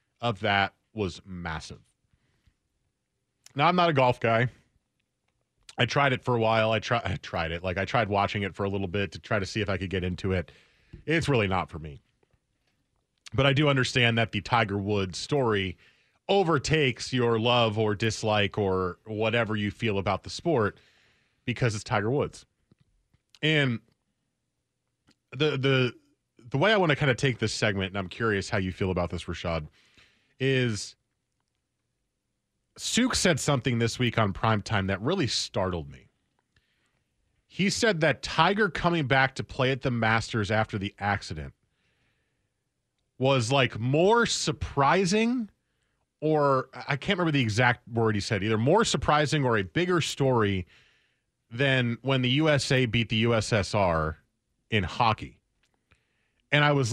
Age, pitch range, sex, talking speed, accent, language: 30-49, 100-135 Hz, male, 160 wpm, American, English